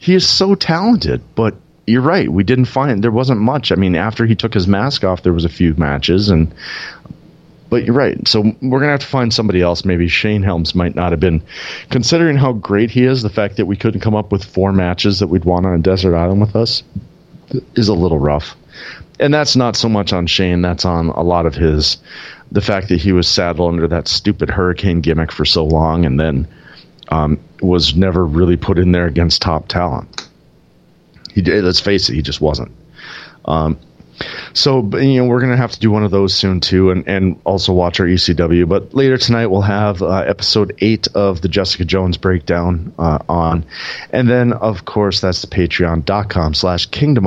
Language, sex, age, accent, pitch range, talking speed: English, male, 40-59, American, 85-105 Hz, 210 wpm